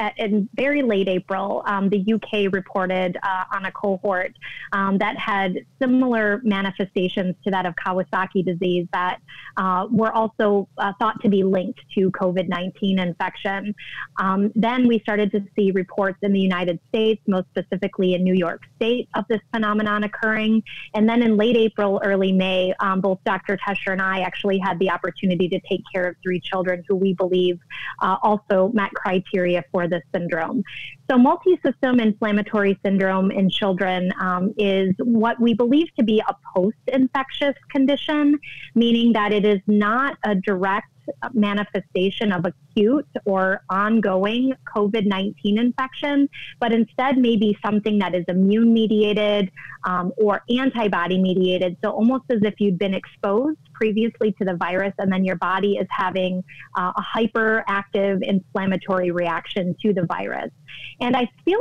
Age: 30-49